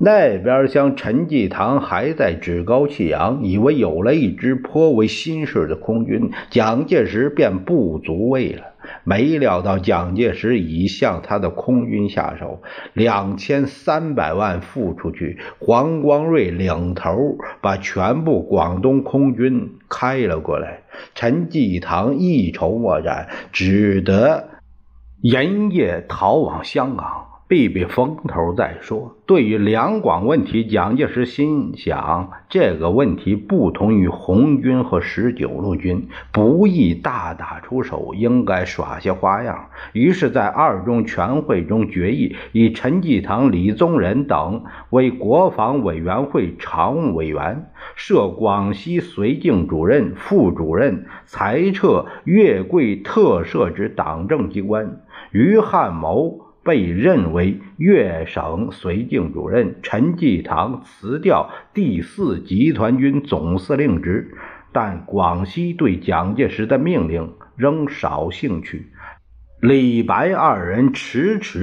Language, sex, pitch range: Chinese, male, 90-130 Hz